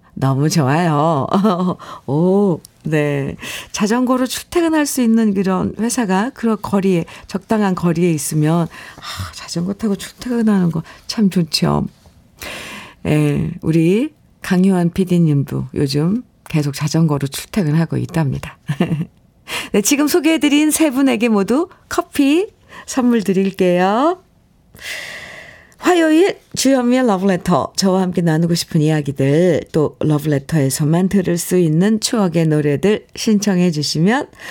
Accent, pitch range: native, 165-230 Hz